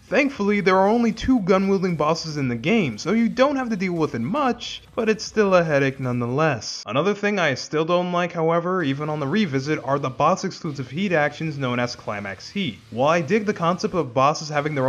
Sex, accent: male, American